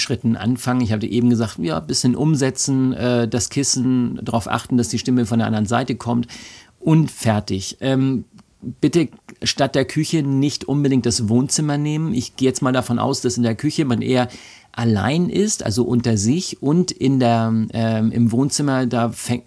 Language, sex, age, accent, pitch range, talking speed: German, male, 50-69, German, 115-130 Hz, 185 wpm